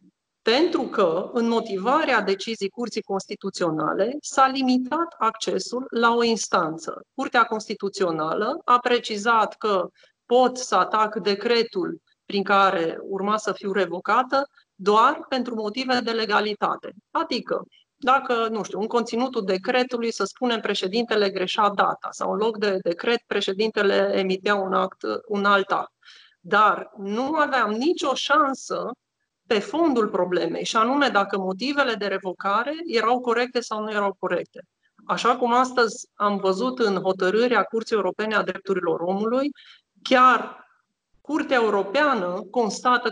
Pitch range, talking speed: 195-245 Hz, 130 wpm